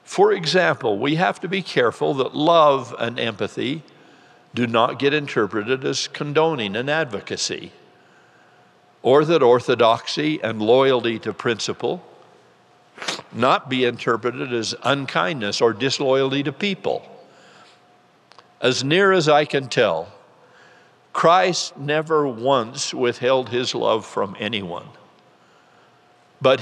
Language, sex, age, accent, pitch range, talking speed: English, male, 60-79, American, 110-145 Hz, 115 wpm